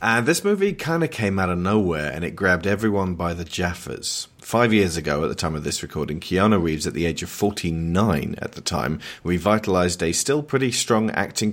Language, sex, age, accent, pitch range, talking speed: English, male, 40-59, British, 85-105 Hz, 215 wpm